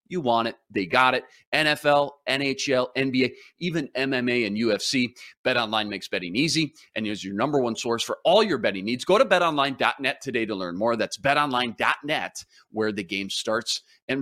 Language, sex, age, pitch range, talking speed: English, male, 40-59, 110-140 Hz, 180 wpm